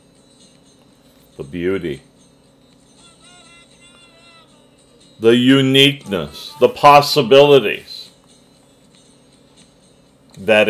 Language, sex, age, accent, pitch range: English, male, 40-59, American, 105-145 Hz